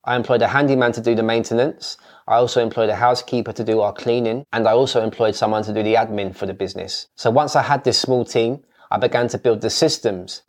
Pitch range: 115-130 Hz